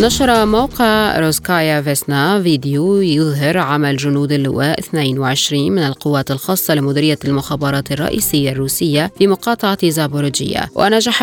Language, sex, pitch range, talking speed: Arabic, female, 145-185 Hz, 110 wpm